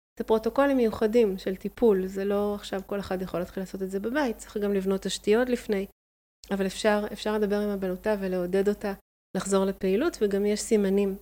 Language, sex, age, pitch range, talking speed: Hebrew, female, 30-49, 190-220 Hz, 175 wpm